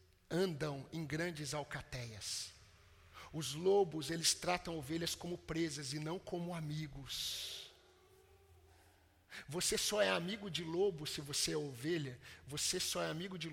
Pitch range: 135-210 Hz